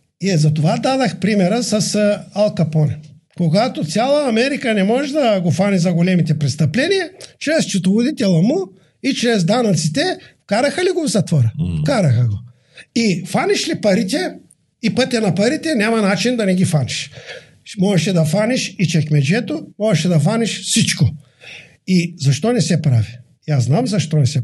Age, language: 50-69, Bulgarian